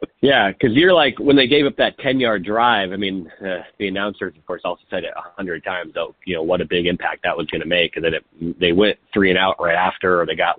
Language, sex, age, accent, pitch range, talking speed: English, male, 30-49, American, 95-130 Hz, 270 wpm